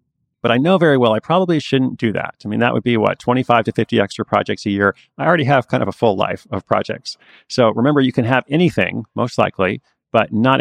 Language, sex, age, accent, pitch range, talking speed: English, male, 30-49, American, 100-130 Hz, 245 wpm